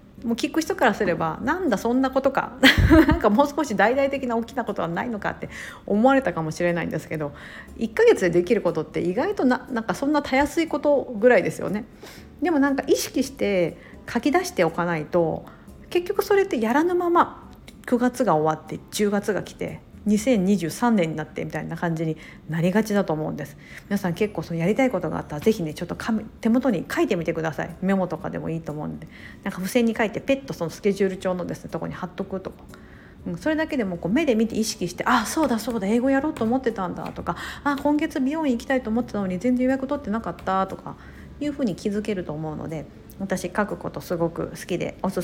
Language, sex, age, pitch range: Japanese, female, 50-69, 175-270 Hz